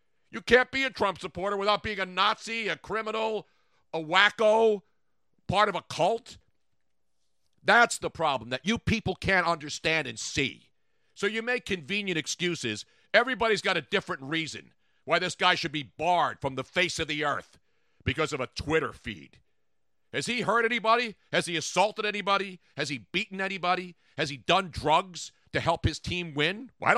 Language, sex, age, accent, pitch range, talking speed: English, male, 50-69, American, 145-220 Hz, 170 wpm